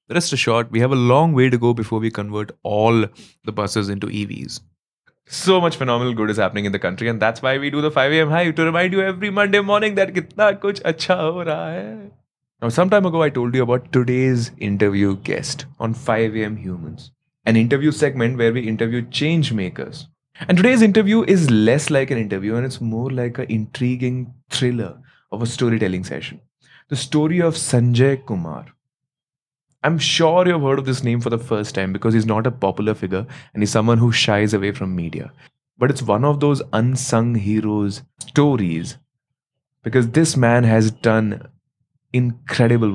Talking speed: 185 wpm